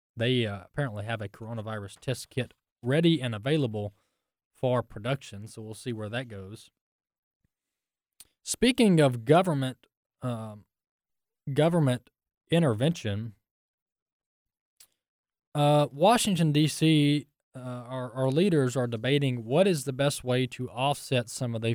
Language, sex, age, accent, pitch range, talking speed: English, male, 20-39, American, 115-145 Hz, 120 wpm